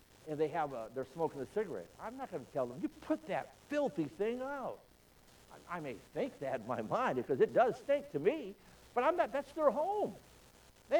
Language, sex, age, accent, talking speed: English, male, 60-79, American, 225 wpm